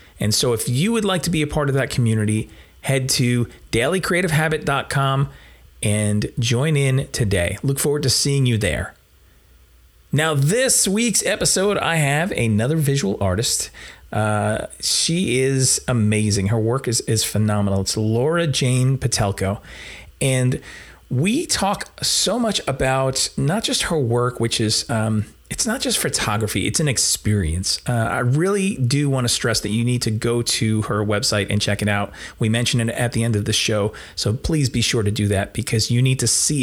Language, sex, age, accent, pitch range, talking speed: English, male, 30-49, American, 110-135 Hz, 175 wpm